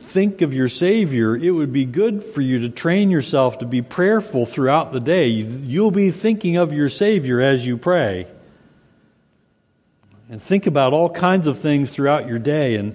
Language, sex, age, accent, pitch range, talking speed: English, male, 40-59, American, 125-175 Hz, 180 wpm